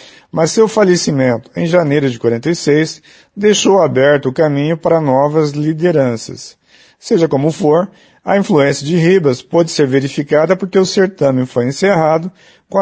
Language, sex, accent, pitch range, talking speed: Portuguese, male, Brazilian, 140-180 Hz, 140 wpm